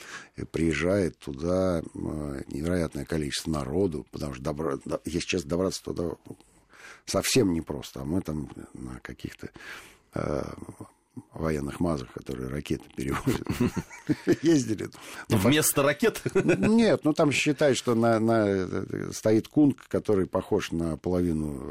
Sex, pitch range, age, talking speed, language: male, 75-105 Hz, 50-69, 105 wpm, Russian